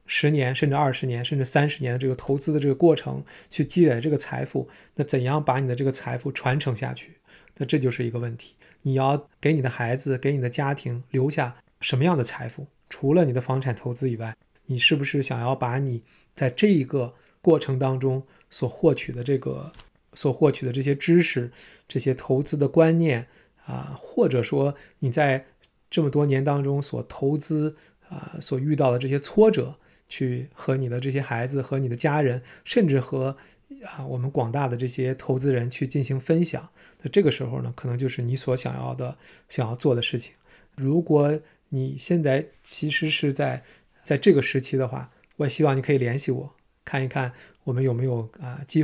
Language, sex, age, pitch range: Chinese, male, 20-39, 125-145 Hz